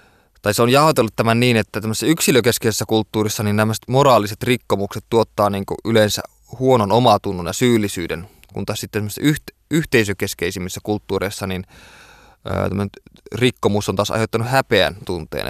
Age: 20-39